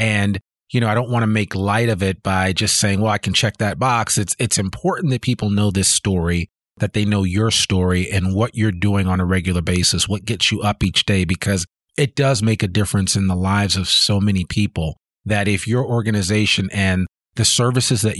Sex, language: male, English